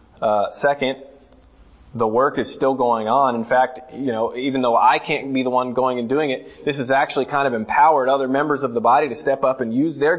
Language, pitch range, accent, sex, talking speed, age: English, 120-180 Hz, American, male, 235 wpm, 20-39